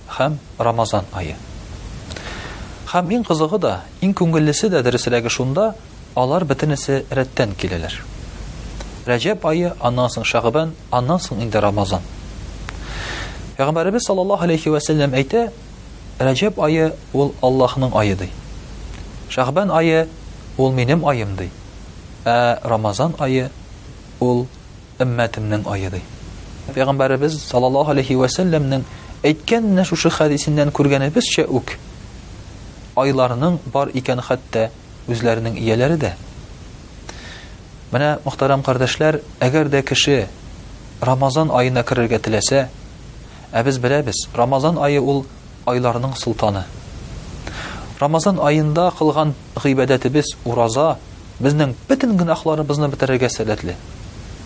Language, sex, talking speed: Russian, male, 100 wpm